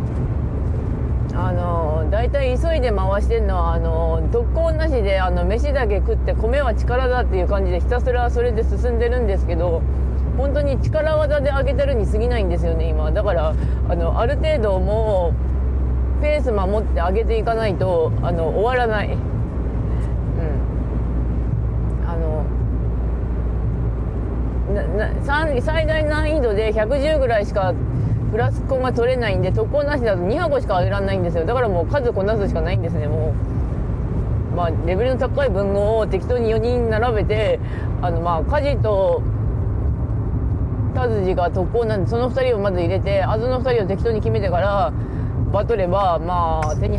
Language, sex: Japanese, female